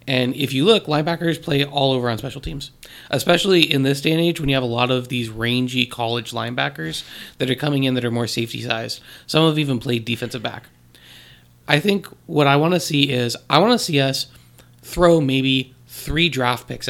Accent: American